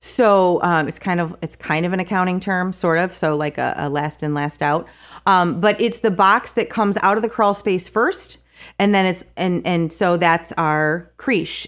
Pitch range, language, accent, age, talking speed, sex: 160-205 Hz, English, American, 30-49, 220 wpm, female